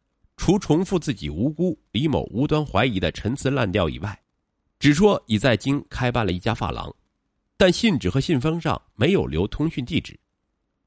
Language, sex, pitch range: Chinese, male, 90-150 Hz